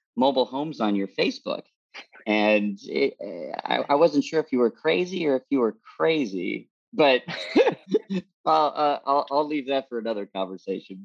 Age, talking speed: 40-59, 165 wpm